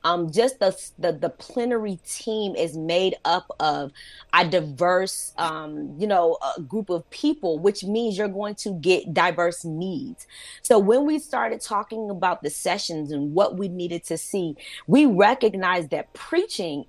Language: English